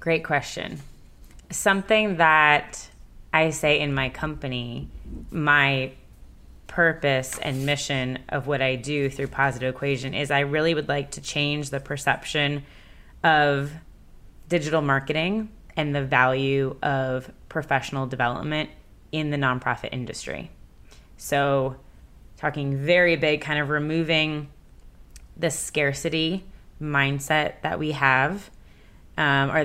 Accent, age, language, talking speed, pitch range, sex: American, 20-39, English, 115 wpm, 135-160 Hz, female